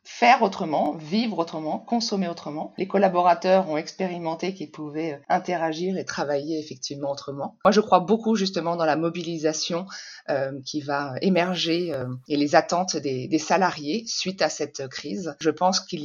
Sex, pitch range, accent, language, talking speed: female, 150-190 Hz, French, French, 160 wpm